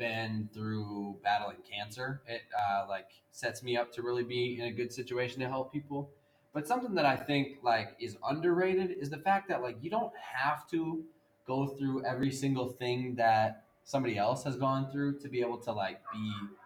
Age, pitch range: 20-39, 115-145 Hz